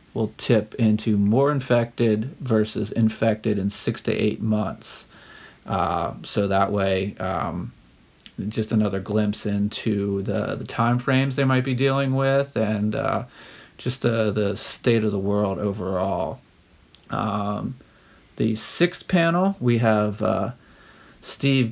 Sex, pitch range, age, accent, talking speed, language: male, 105-120 Hz, 40-59, American, 135 wpm, English